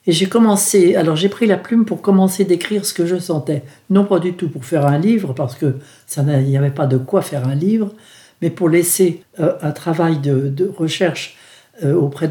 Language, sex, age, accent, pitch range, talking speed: French, male, 60-79, French, 145-195 Hz, 220 wpm